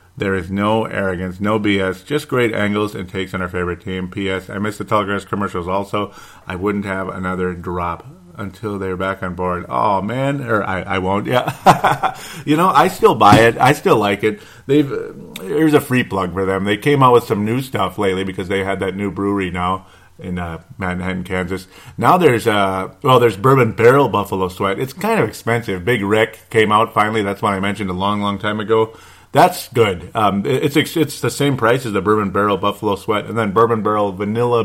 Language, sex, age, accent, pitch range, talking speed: English, male, 30-49, American, 95-115 Hz, 210 wpm